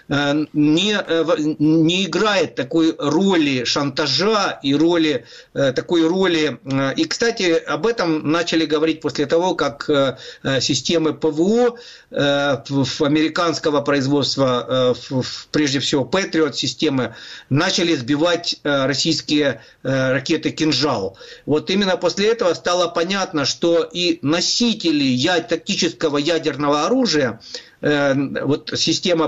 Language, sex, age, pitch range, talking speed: Ukrainian, male, 50-69, 140-180 Hz, 100 wpm